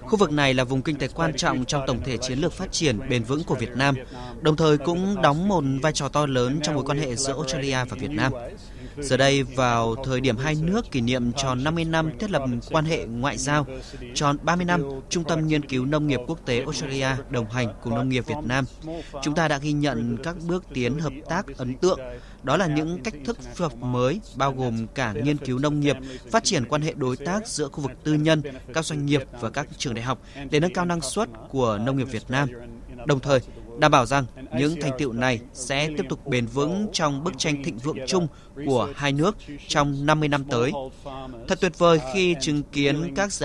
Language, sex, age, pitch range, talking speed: Vietnamese, male, 20-39, 130-155 Hz, 230 wpm